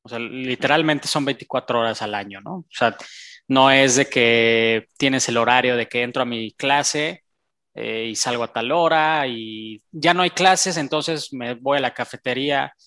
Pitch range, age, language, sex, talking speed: 120-150 Hz, 20-39, Spanish, male, 190 wpm